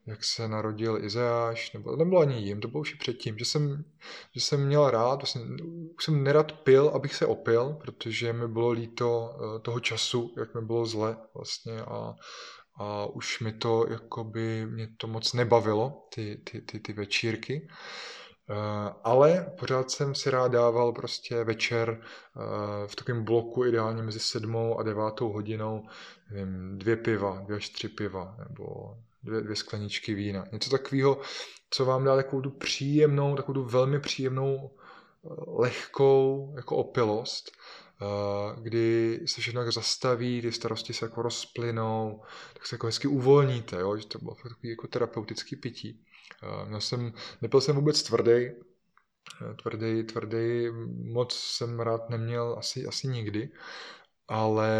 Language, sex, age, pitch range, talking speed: Czech, male, 20-39, 110-125 Hz, 145 wpm